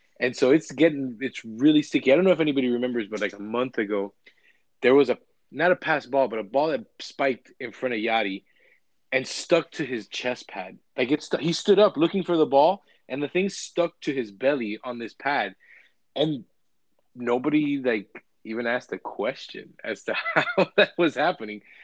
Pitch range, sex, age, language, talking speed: 105-140 Hz, male, 20-39, English, 200 wpm